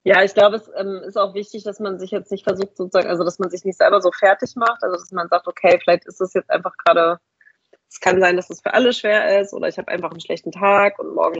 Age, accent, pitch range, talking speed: 30-49, German, 175-205 Hz, 280 wpm